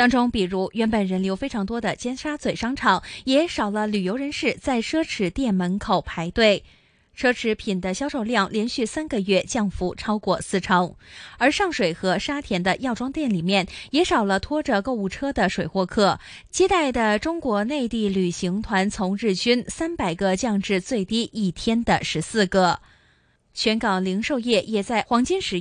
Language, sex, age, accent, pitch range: Chinese, female, 20-39, native, 190-250 Hz